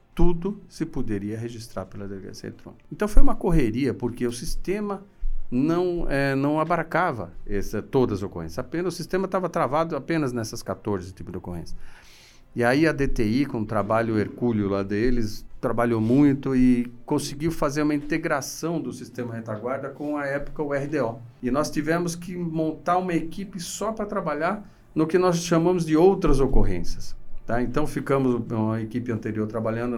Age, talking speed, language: 50-69, 160 wpm, Portuguese